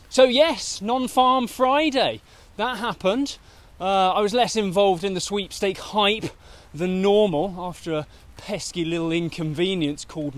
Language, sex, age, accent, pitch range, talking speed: English, male, 20-39, British, 150-205 Hz, 135 wpm